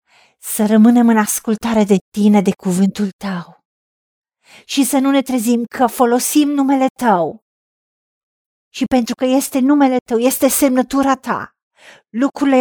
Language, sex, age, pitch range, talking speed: Romanian, female, 40-59, 195-270 Hz, 135 wpm